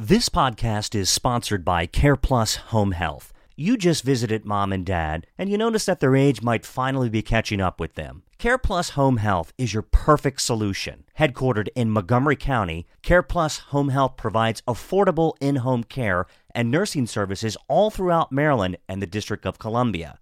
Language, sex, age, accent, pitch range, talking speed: English, male, 40-59, American, 105-150 Hz, 165 wpm